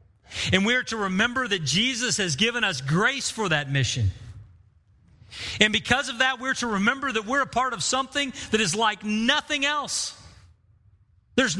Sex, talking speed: male, 170 wpm